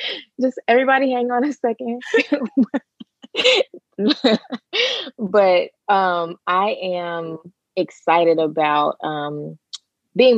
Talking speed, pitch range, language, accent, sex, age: 80 wpm, 150-210 Hz, English, American, female, 20-39